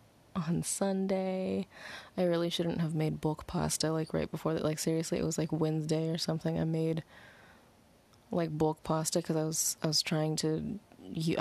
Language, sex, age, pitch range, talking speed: English, female, 20-39, 150-175 Hz, 175 wpm